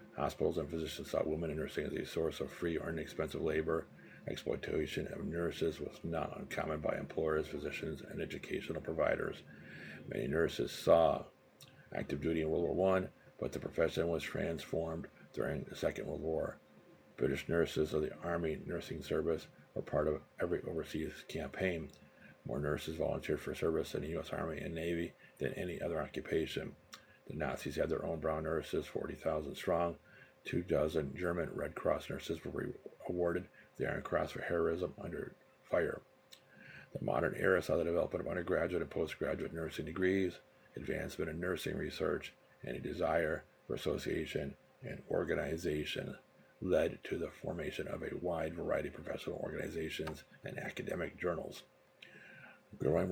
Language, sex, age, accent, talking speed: English, male, 50-69, American, 155 wpm